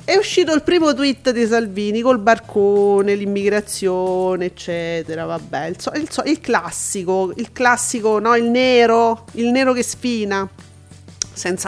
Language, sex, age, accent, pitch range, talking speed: Italian, female, 40-59, native, 190-255 Hz, 145 wpm